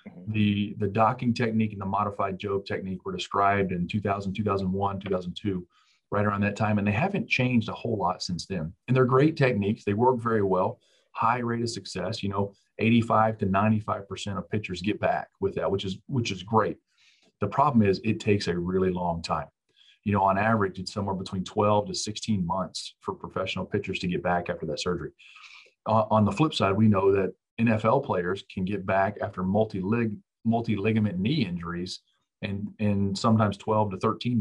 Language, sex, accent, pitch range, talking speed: English, male, American, 95-110 Hz, 190 wpm